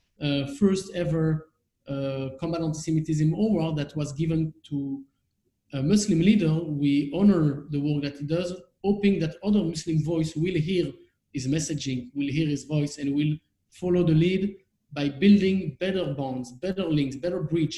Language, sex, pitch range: English, male, 150-175 Hz